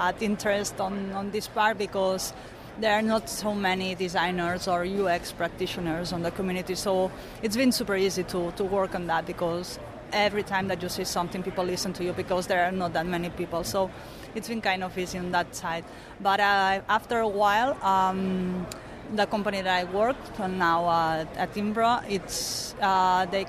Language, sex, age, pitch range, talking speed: English, female, 30-49, 185-215 Hz, 185 wpm